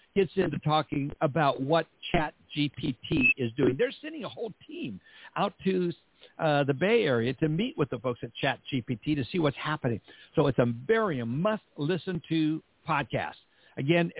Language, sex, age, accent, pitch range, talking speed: English, male, 60-79, American, 130-170 Hz, 180 wpm